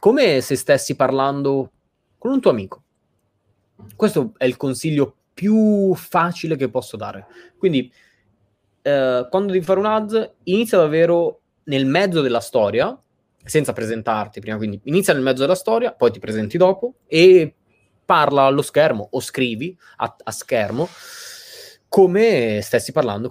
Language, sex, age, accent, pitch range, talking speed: Italian, male, 20-39, native, 110-165 Hz, 145 wpm